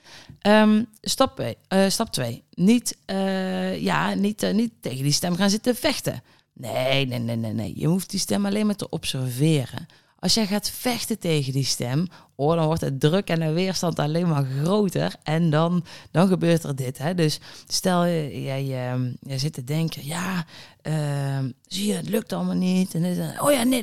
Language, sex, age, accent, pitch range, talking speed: Dutch, female, 20-39, Dutch, 150-220 Hz, 185 wpm